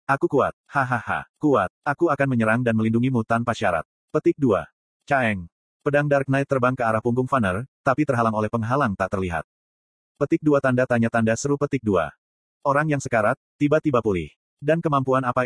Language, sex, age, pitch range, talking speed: Indonesian, male, 30-49, 110-140 Hz, 170 wpm